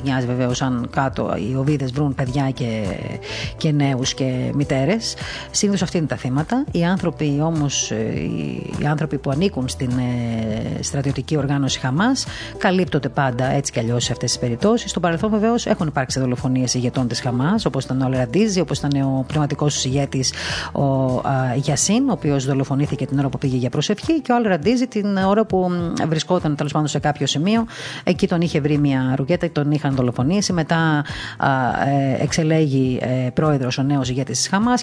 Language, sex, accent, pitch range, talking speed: Greek, female, native, 135-165 Hz, 165 wpm